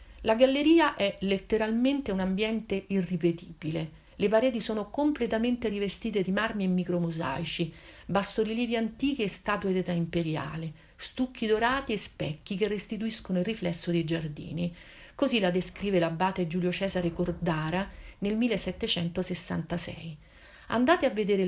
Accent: native